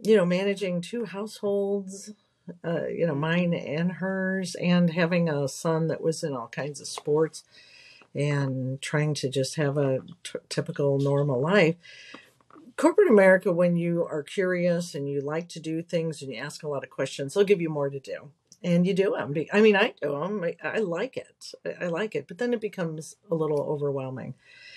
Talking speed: 195 wpm